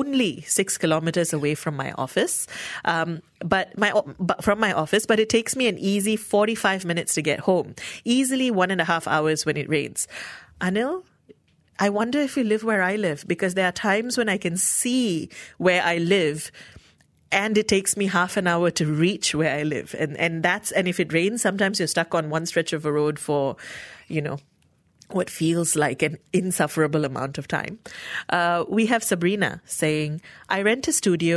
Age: 30-49